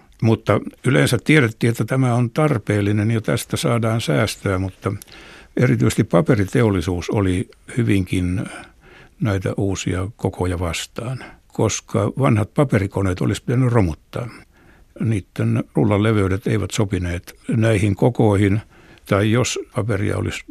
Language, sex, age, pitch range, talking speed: Finnish, male, 60-79, 95-115 Hz, 110 wpm